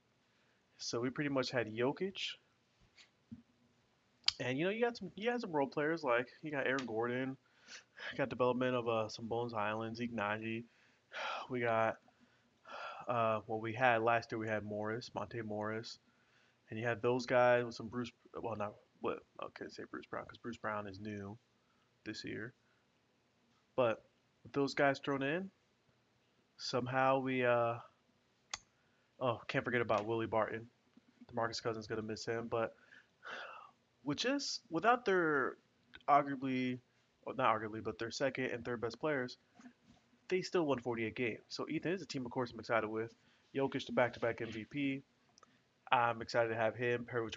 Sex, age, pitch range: male, 20-39, 115-135 Hz